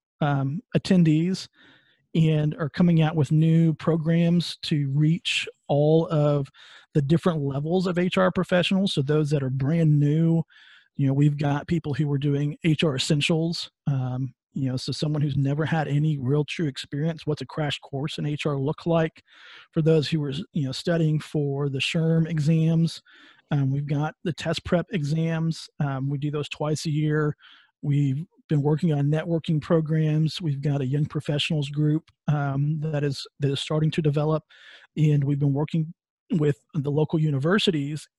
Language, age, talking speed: English, 40-59, 170 wpm